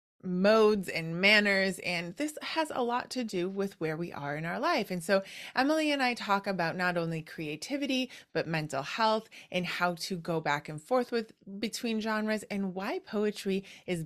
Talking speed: 190 wpm